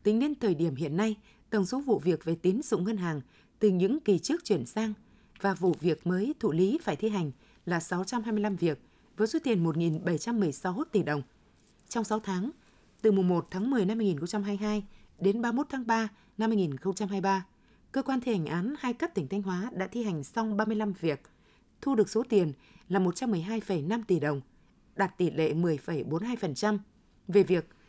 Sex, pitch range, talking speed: female, 175-225 Hz, 185 wpm